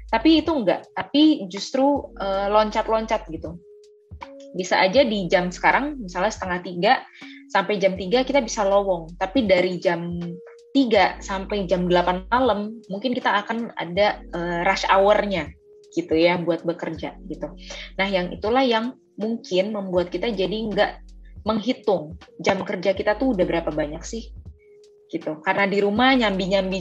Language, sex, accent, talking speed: Indonesian, female, native, 145 wpm